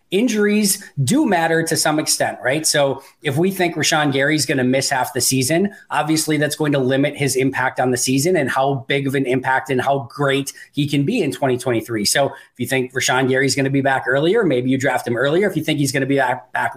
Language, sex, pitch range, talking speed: English, male, 130-155 Hz, 245 wpm